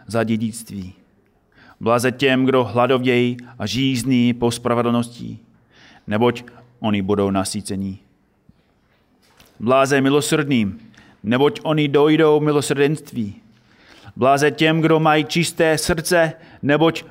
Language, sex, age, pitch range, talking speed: Czech, male, 30-49, 105-135 Hz, 95 wpm